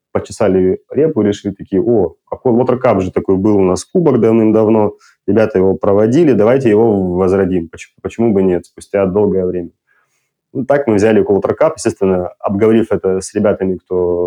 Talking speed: 160 wpm